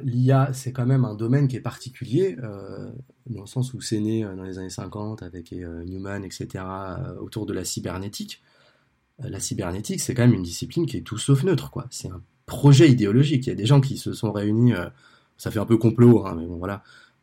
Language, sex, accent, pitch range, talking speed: French, male, French, 105-130 Hz, 235 wpm